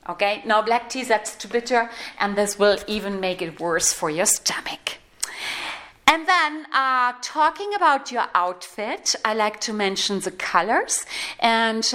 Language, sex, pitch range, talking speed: English, female, 200-255 Hz, 155 wpm